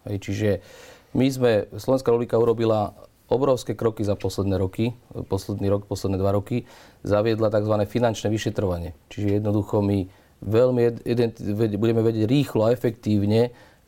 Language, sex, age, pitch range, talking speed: Slovak, male, 40-59, 105-120 Hz, 125 wpm